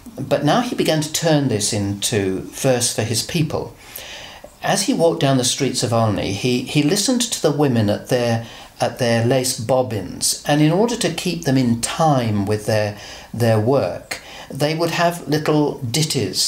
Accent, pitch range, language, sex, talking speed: British, 120-160 Hz, English, male, 180 wpm